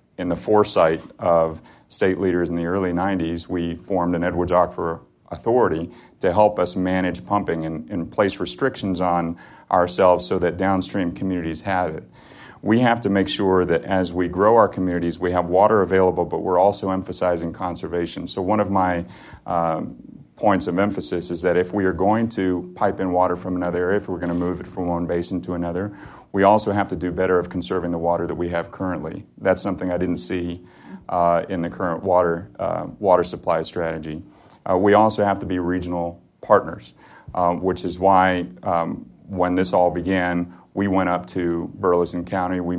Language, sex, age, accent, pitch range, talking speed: English, male, 40-59, American, 85-95 Hz, 190 wpm